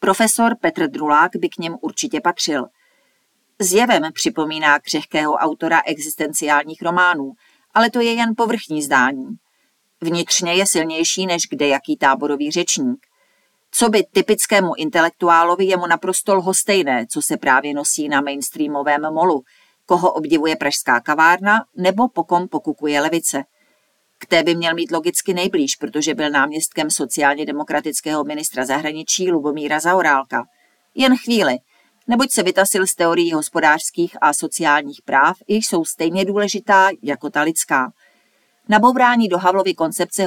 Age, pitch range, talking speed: 40-59, 150-195 Hz, 135 wpm